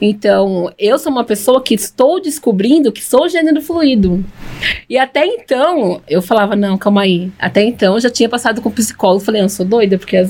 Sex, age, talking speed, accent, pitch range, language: female, 20-39, 205 wpm, Brazilian, 200-250 Hz, Portuguese